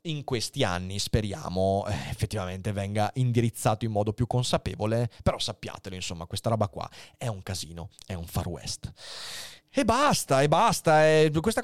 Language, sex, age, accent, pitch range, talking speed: Italian, male, 30-49, native, 105-155 Hz, 150 wpm